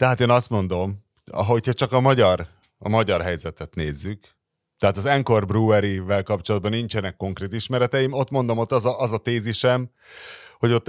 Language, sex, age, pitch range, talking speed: Hungarian, male, 30-49, 95-120 Hz, 165 wpm